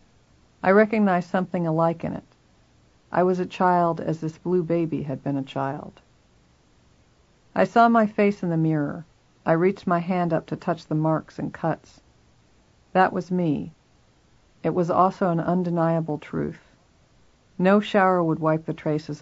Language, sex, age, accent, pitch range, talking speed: English, female, 50-69, American, 145-180 Hz, 160 wpm